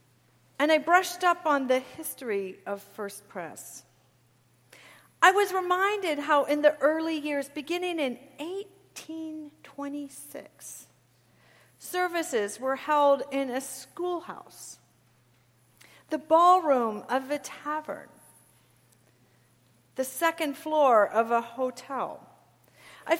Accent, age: American, 50-69